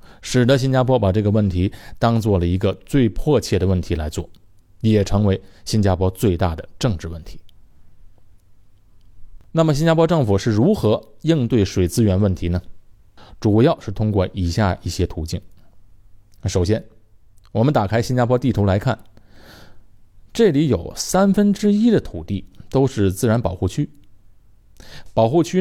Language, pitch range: Chinese, 95-115 Hz